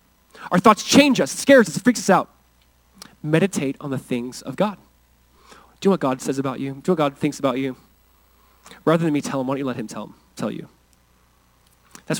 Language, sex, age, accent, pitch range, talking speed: English, male, 20-39, American, 180-265 Hz, 215 wpm